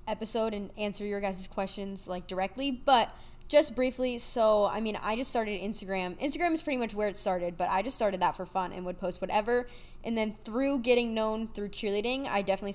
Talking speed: 210 wpm